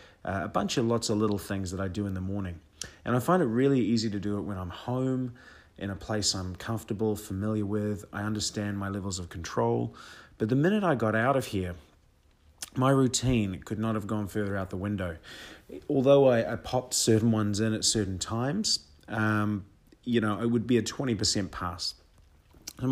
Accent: Australian